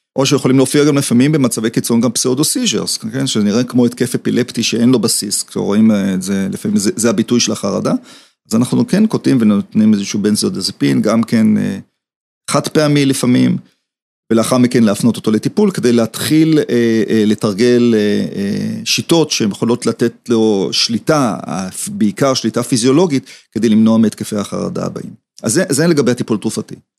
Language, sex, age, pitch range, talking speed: Hebrew, male, 40-59, 110-185 Hz, 165 wpm